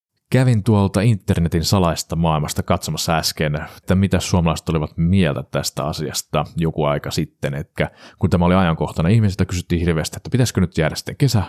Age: 30-49